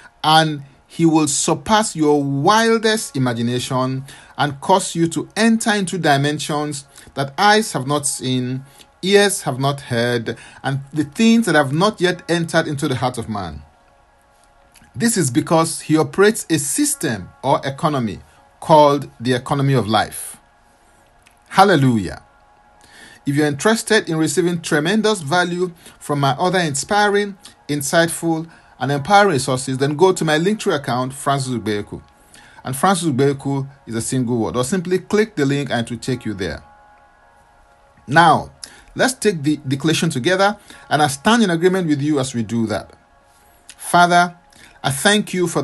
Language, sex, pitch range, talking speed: English, male, 130-180 Hz, 150 wpm